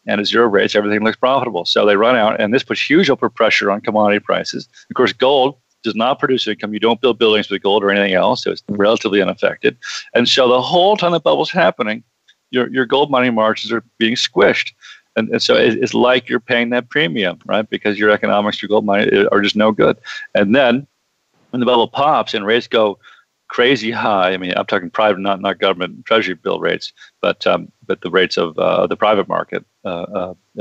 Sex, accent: male, American